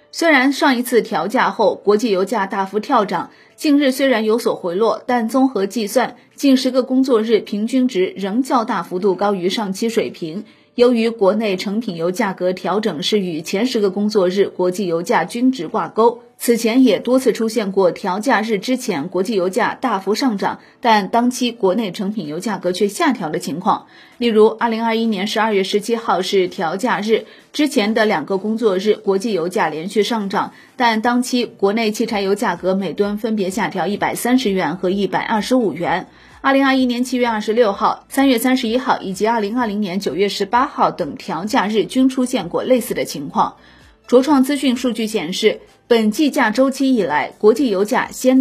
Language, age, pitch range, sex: Chinese, 30-49, 205-255 Hz, female